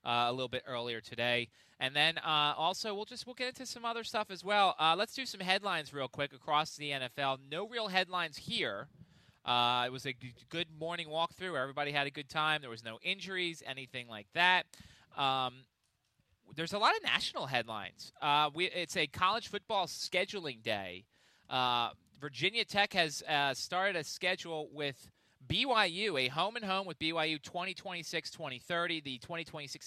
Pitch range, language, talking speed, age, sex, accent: 135-180 Hz, English, 175 wpm, 30-49, male, American